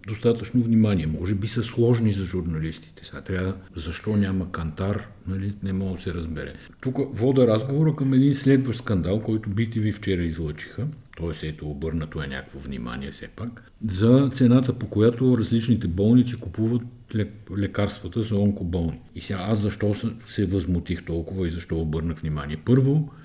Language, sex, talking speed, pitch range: Bulgarian, male, 155 wpm, 95-120 Hz